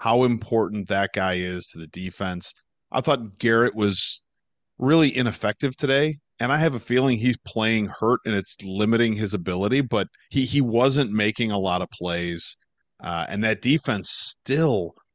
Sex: male